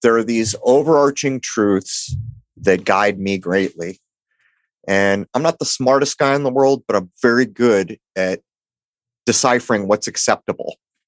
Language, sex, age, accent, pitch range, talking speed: English, male, 30-49, American, 105-135 Hz, 140 wpm